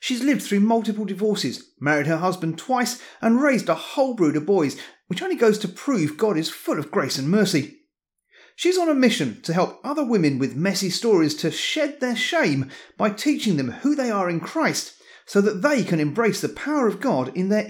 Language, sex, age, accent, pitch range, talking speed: English, male, 30-49, British, 150-255 Hz, 210 wpm